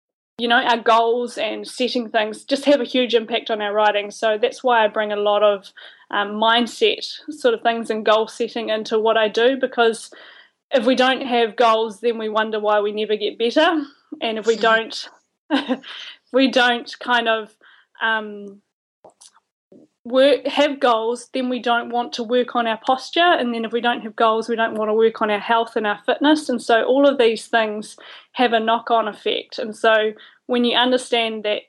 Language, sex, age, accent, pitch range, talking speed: English, female, 20-39, Australian, 220-250 Hz, 195 wpm